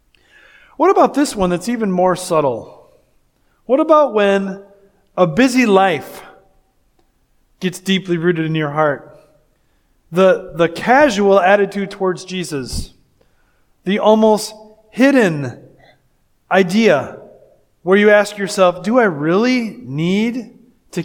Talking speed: 110 wpm